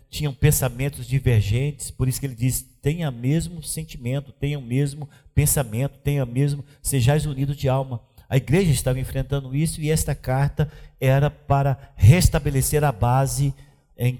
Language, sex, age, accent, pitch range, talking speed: Portuguese, male, 50-69, Brazilian, 120-145 Hz, 145 wpm